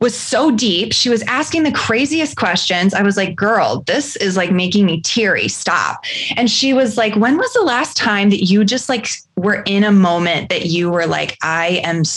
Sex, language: female, English